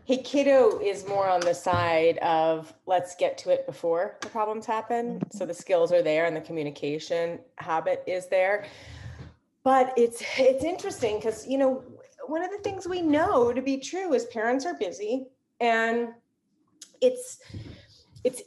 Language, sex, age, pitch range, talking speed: English, female, 30-49, 165-265 Hz, 160 wpm